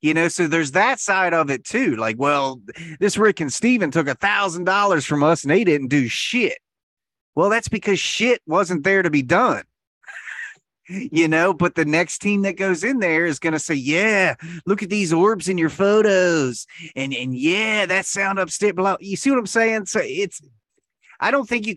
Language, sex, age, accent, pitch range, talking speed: English, male, 30-49, American, 130-180 Hz, 200 wpm